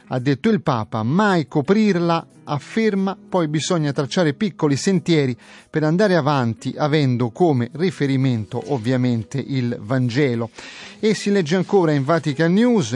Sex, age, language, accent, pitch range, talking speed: male, 30-49, Italian, native, 135-170 Hz, 130 wpm